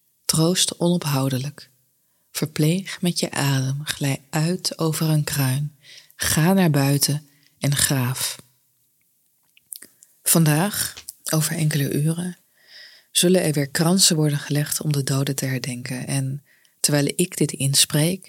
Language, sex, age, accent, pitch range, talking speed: Dutch, female, 20-39, Dutch, 135-155 Hz, 120 wpm